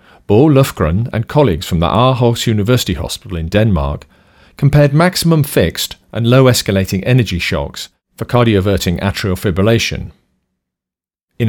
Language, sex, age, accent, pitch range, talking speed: English, male, 40-59, British, 85-120 Hz, 125 wpm